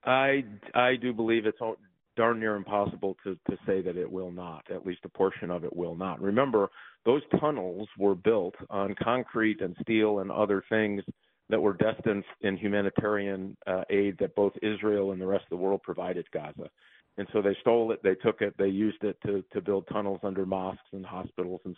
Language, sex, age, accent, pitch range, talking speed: English, male, 40-59, American, 95-105 Hz, 205 wpm